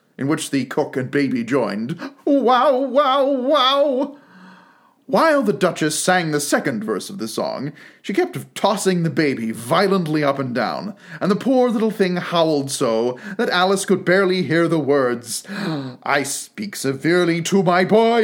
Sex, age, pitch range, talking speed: male, 30-49, 150-255 Hz, 160 wpm